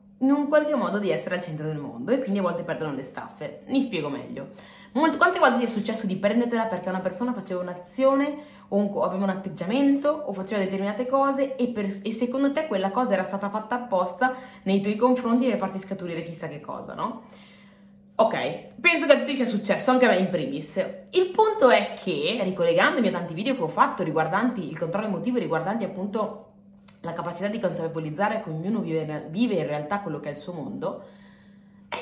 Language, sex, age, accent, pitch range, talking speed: Italian, female, 20-39, native, 195-260 Hz, 200 wpm